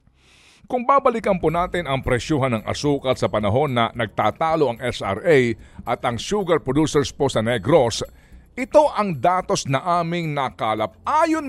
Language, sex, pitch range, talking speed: Filipino, male, 130-205 Hz, 145 wpm